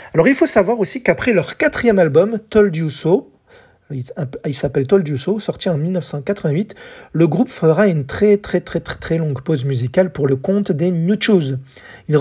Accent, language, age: French, French, 40-59